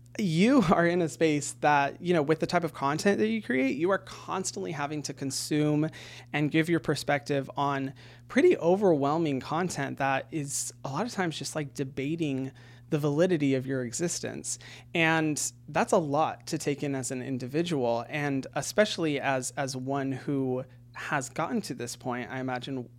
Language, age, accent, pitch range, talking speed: English, 30-49, American, 125-155 Hz, 175 wpm